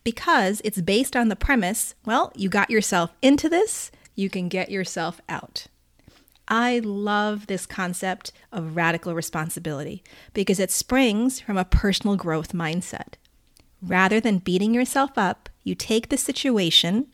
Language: English